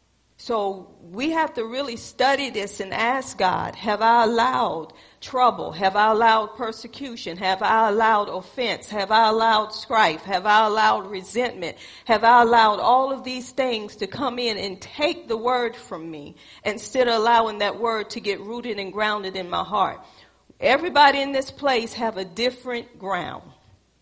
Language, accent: English, American